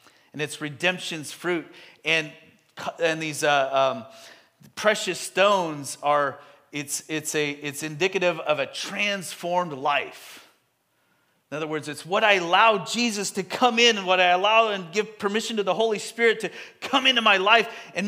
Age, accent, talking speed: 40-59, American, 165 wpm